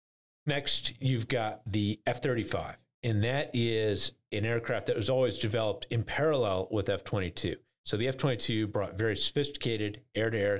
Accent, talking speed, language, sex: American, 140 wpm, English, male